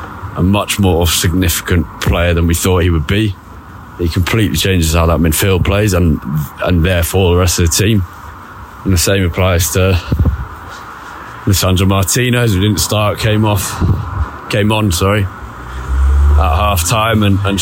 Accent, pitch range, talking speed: British, 85-105 Hz, 155 wpm